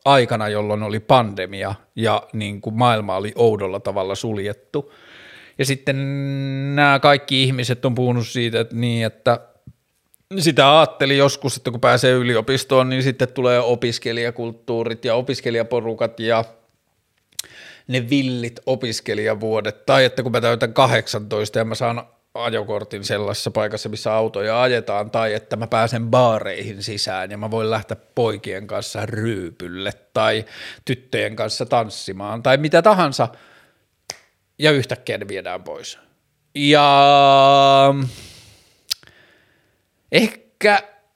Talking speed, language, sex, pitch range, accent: 115 wpm, Finnish, male, 110-135 Hz, native